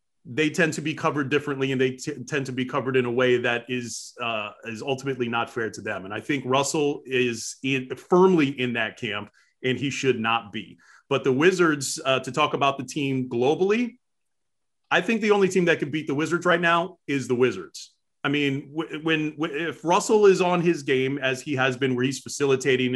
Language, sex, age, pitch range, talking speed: English, male, 30-49, 130-160 Hz, 215 wpm